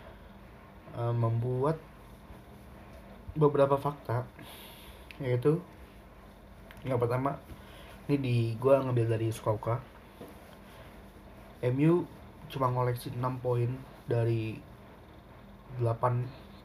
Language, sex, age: Indonesian, male, 20-39